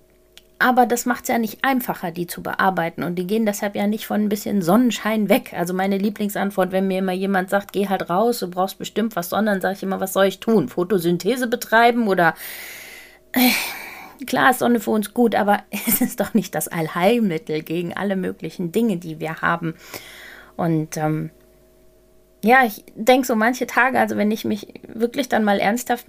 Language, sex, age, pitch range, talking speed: German, female, 30-49, 170-215 Hz, 190 wpm